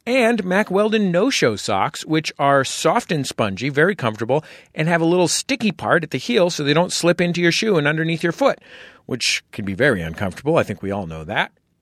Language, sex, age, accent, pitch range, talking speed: English, male, 40-59, American, 105-170 Hz, 220 wpm